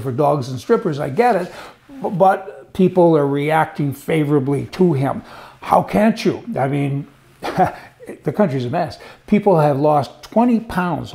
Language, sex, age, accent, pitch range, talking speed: English, male, 60-79, American, 140-185 Hz, 150 wpm